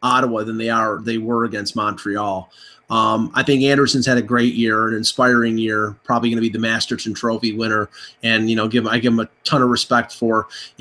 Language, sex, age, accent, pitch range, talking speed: English, male, 30-49, American, 115-140 Hz, 220 wpm